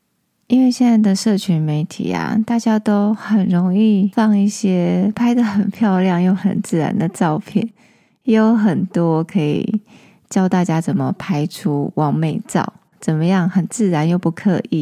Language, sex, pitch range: Chinese, female, 170-215 Hz